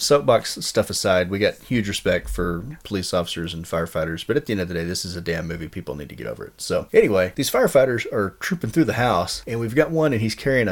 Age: 30-49